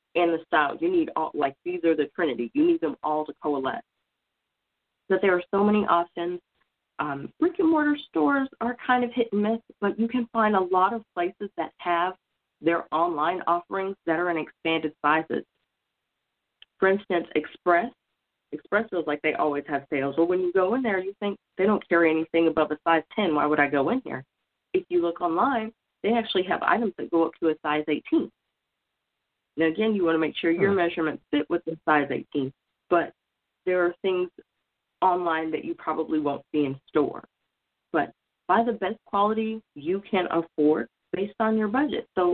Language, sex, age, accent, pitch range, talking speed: English, female, 40-59, American, 155-215 Hz, 195 wpm